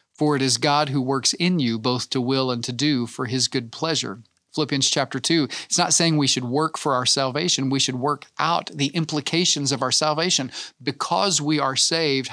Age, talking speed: 40-59, 210 wpm